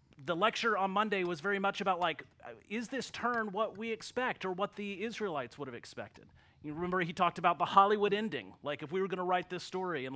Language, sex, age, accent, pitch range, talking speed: English, male, 30-49, American, 130-175 Hz, 235 wpm